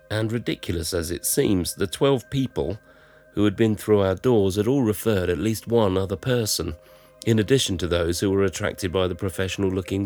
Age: 40-59